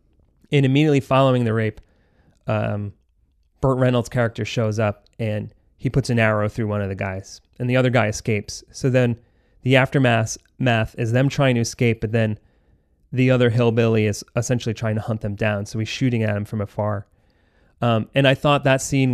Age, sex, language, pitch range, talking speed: 30-49, male, English, 110-135 Hz, 190 wpm